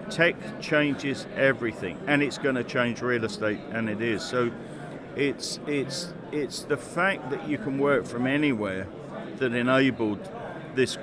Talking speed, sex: 150 wpm, male